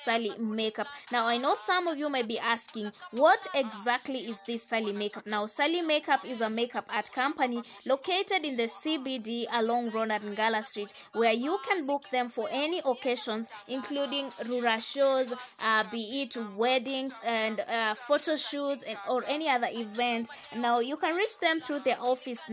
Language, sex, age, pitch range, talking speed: English, female, 20-39, 225-290 Hz, 175 wpm